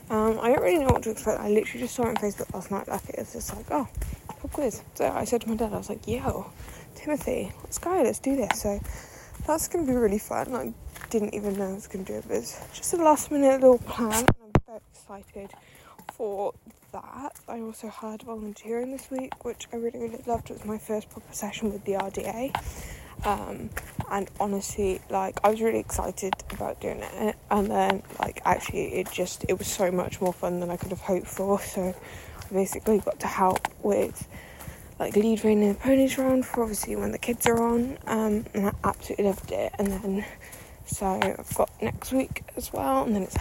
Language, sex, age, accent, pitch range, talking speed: English, female, 10-29, British, 200-235 Hz, 220 wpm